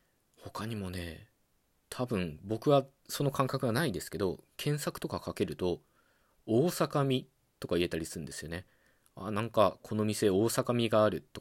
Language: Japanese